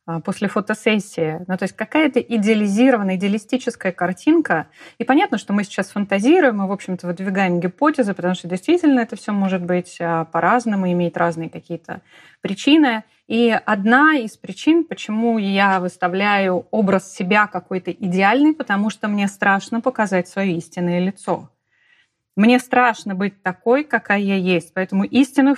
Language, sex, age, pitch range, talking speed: Russian, female, 30-49, 185-235 Hz, 145 wpm